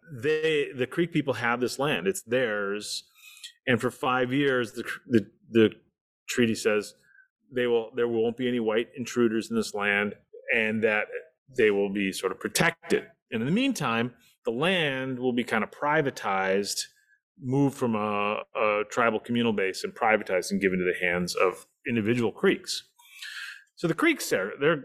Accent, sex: American, male